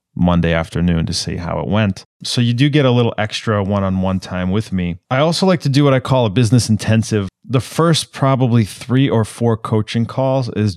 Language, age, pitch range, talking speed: English, 30-49, 95-120 Hz, 210 wpm